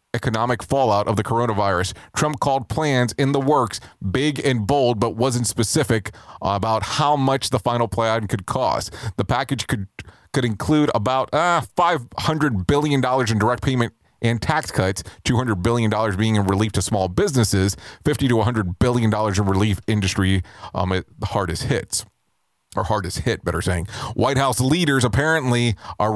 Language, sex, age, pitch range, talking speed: English, male, 30-49, 100-125 Hz, 165 wpm